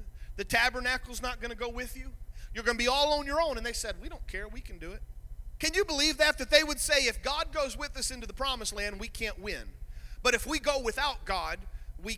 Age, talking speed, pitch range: 40-59, 260 wpm, 210-255 Hz